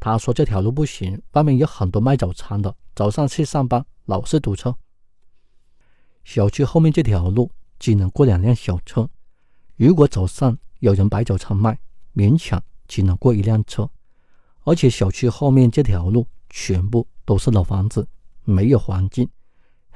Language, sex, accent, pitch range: Chinese, male, native, 95-125 Hz